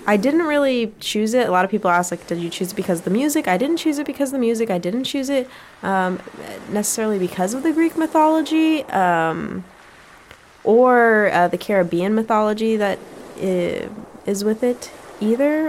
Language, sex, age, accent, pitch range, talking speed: English, female, 10-29, American, 180-230 Hz, 185 wpm